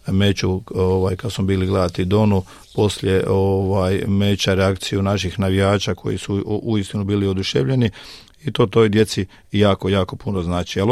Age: 50-69